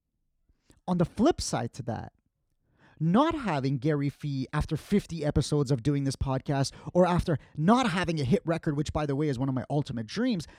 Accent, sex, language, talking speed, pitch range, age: American, male, English, 195 wpm, 135-195 Hz, 30-49